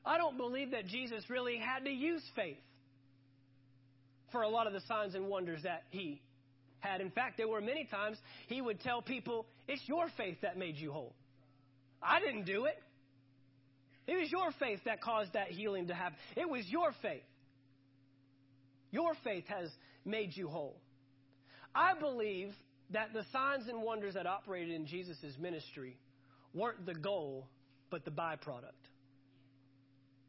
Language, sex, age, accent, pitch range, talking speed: English, male, 40-59, American, 135-225 Hz, 160 wpm